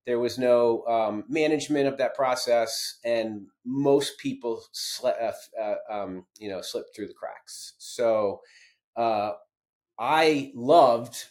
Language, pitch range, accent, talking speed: English, 115-140 Hz, American, 125 wpm